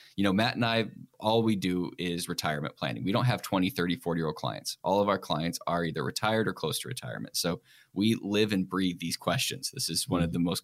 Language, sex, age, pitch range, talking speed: English, male, 10-29, 90-125 Hz, 235 wpm